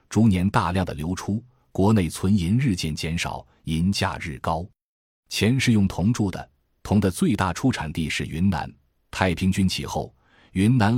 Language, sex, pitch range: Chinese, male, 80-105 Hz